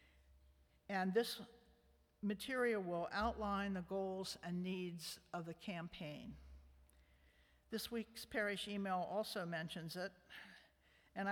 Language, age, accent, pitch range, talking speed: English, 60-79, American, 160-205 Hz, 105 wpm